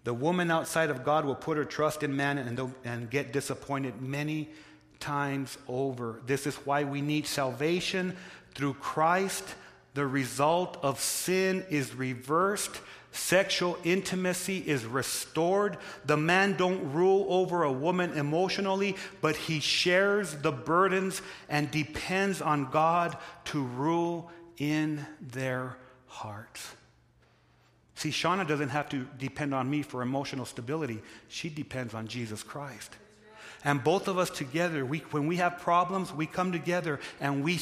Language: English